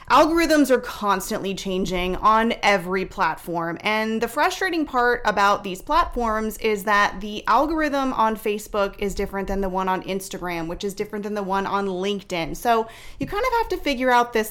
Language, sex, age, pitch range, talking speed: English, female, 30-49, 190-235 Hz, 180 wpm